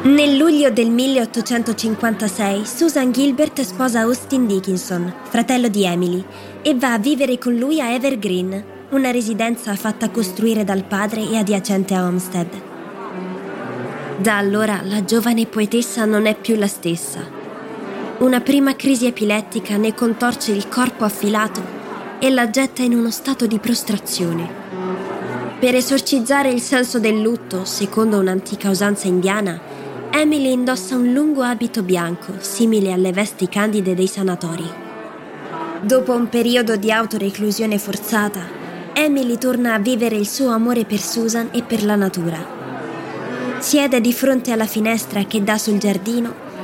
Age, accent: 20-39, native